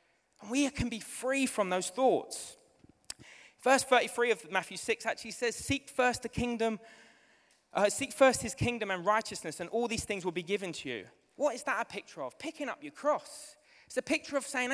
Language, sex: English, male